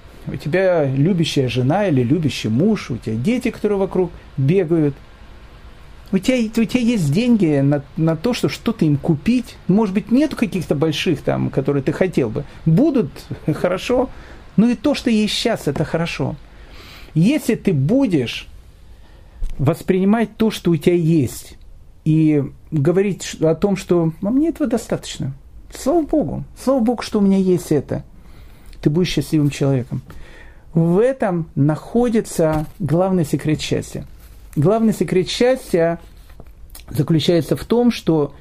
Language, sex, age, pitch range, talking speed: Russian, male, 40-59, 140-200 Hz, 140 wpm